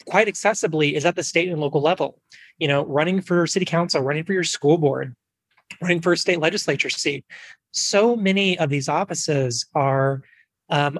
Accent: American